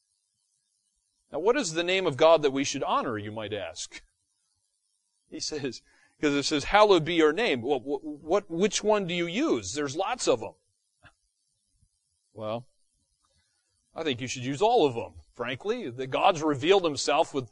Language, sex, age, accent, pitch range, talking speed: English, male, 30-49, American, 125-190 Hz, 170 wpm